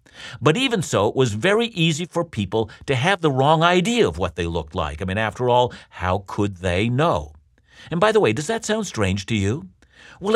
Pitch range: 110-180 Hz